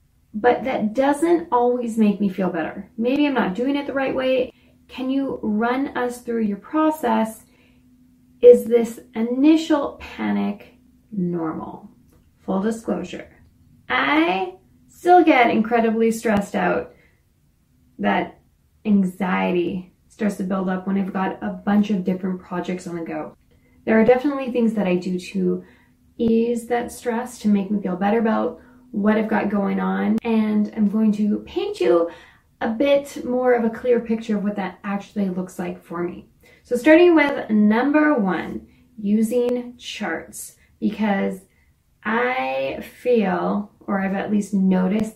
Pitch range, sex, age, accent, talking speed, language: 190-245 Hz, female, 20-39, American, 145 wpm, English